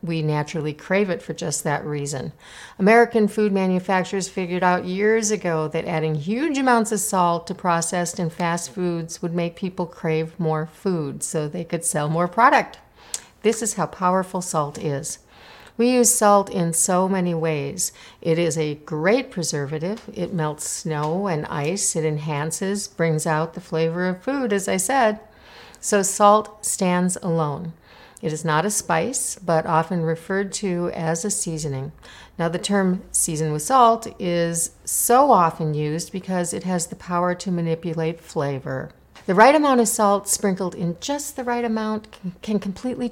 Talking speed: 165 wpm